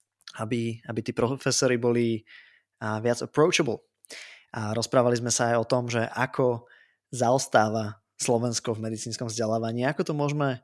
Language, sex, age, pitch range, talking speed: Slovak, male, 20-39, 110-130 Hz, 135 wpm